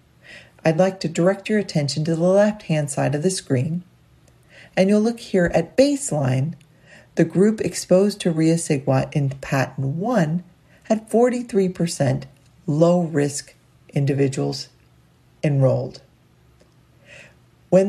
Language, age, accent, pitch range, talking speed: English, 40-59, American, 140-195 Hz, 110 wpm